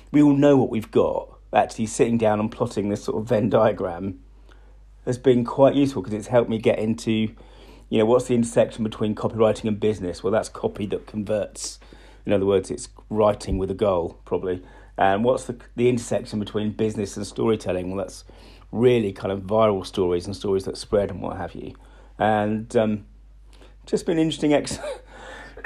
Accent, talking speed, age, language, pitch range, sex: British, 185 wpm, 40-59, English, 105-125 Hz, male